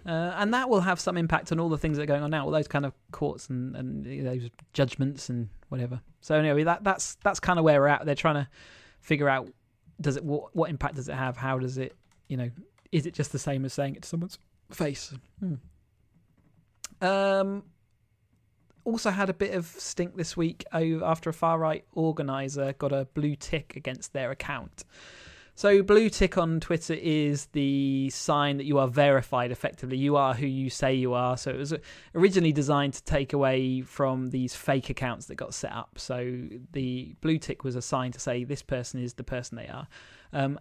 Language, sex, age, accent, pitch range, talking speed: English, male, 20-39, British, 130-160 Hz, 215 wpm